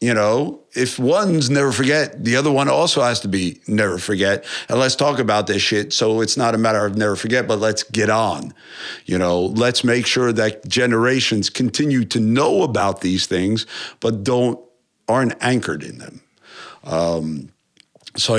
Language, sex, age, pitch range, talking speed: English, male, 50-69, 95-120 Hz, 175 wpm